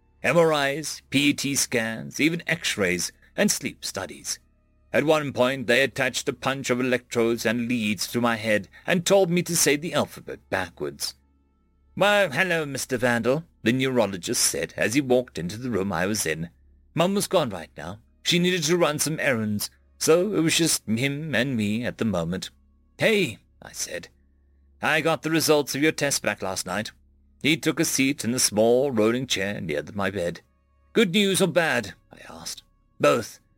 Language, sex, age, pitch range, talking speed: English, male, 40-59, 110-160 Hz, 175 wpm